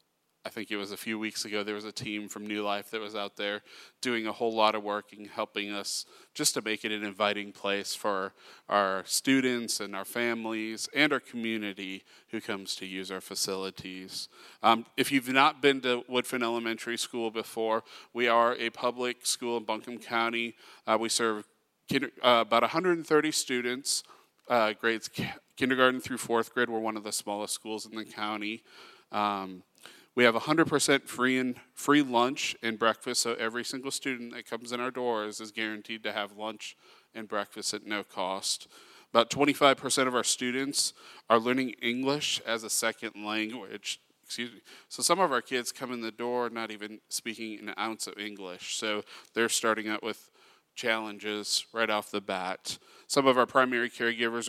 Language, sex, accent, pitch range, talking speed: English, male, American, 105-120 Hz, 180 wpm